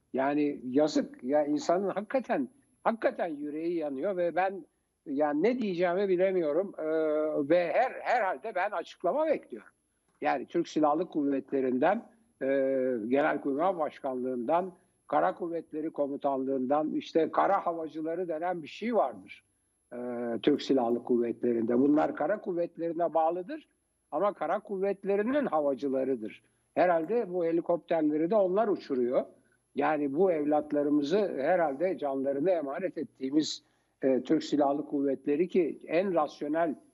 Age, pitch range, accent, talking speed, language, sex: 60-79, 140-190 Hz, native, 120 wpm, Turkish, male